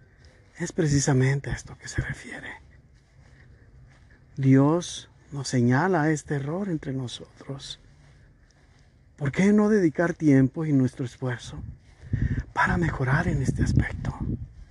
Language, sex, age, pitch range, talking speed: Spanish, male, 50-69, 125-170 Hz, 110 wpm